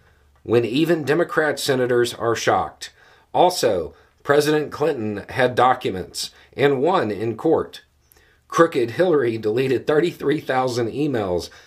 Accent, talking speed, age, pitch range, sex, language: American, 105 wpm, 50-69, 90-120 Hz, male, English